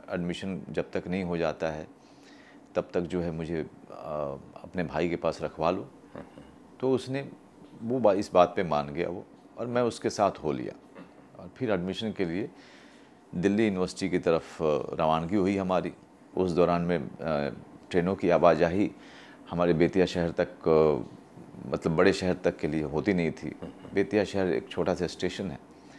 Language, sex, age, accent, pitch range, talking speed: Hindi, male, 40-59, native, 80-100 Hz, 165 wpm